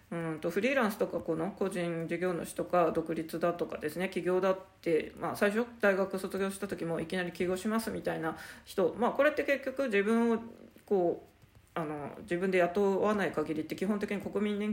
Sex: female